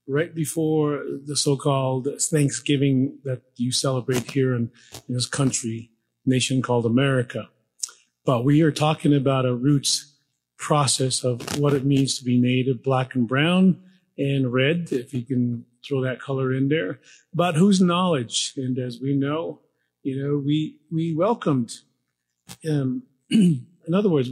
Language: English